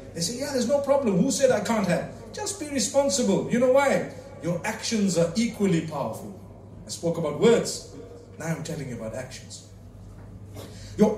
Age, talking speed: 50-69, 175 wpm